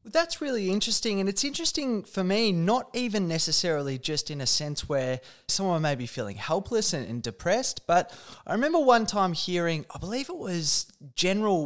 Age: 20-39